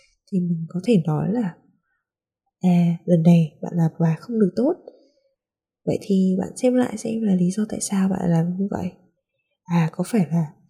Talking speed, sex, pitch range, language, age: 190 wpm, female, 170-220 Hz, Vietnamese, 20-39